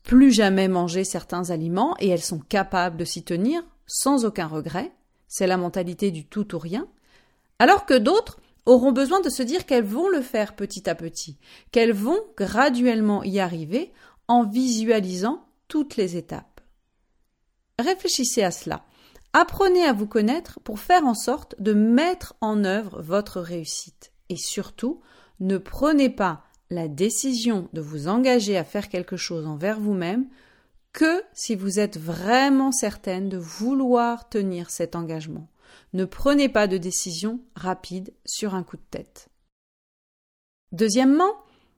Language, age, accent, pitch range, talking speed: French, 40-59, French, 185-265 Hz, 150 wpm